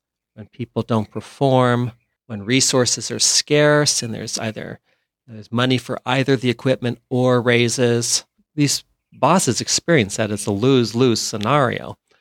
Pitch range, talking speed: 110-135 Hz, 135 wpm